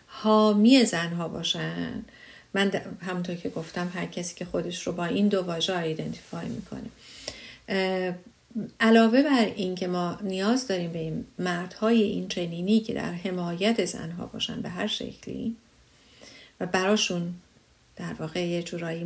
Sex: female